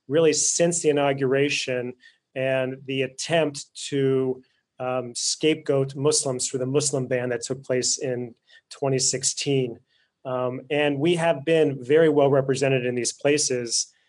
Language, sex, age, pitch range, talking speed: English, male, 30-49, 130-150 Hz, 130 wpm